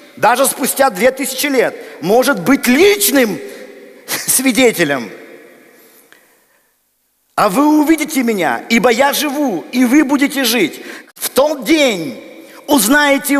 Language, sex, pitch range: Russian, male, 230-280 Hz